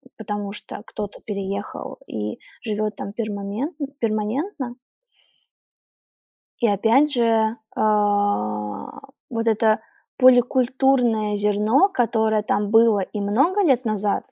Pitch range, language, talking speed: 205-245 Hz, Russian, 90 wpm